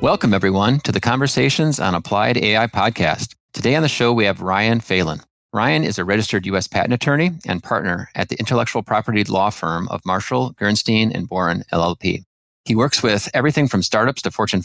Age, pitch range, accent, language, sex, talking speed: 30-49, 95-120 Hz, American, English, male, 190 wpm